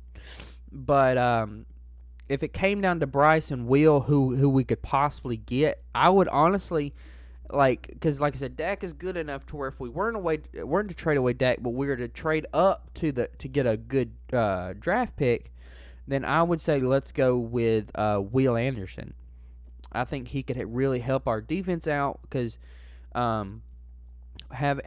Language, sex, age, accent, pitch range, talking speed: English, male, 20-39, American, 100-140 Hz, 190 wpm